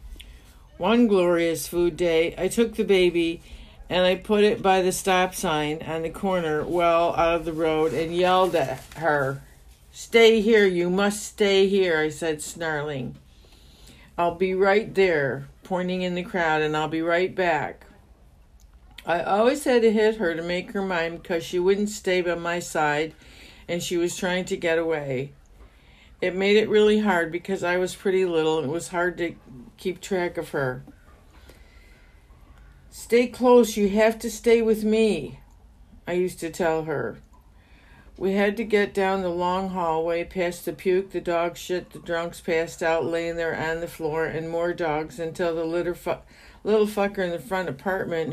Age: 50-69